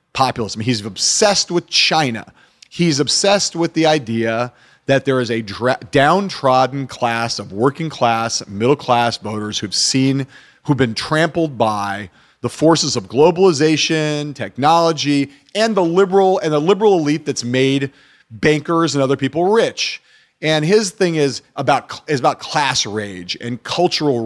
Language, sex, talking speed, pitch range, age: English, male, 145 wpm, 120-160 Hz, 40-59